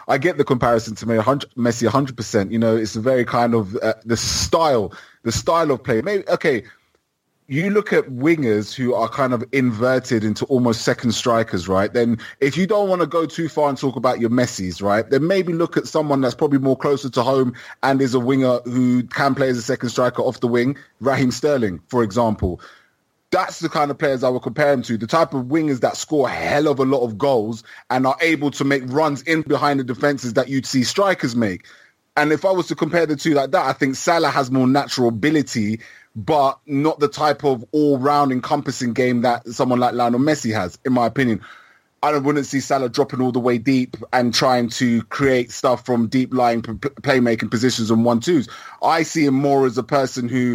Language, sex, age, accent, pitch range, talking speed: English, male, 20-39, British, 120-145 Hz, 215 wpm